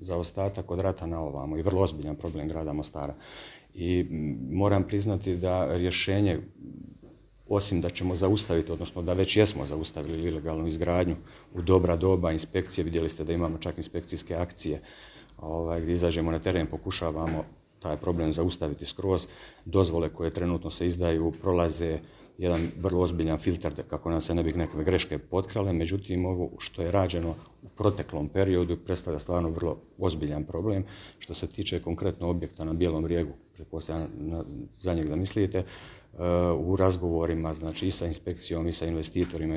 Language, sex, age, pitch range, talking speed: Croatian, male, 40-59, 80-90 Hz, 155 wpm